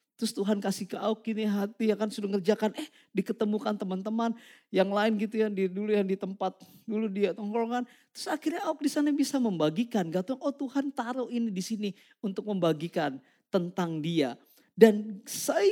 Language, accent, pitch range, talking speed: Indonesian, native, 200-280 Hz, 175 wpm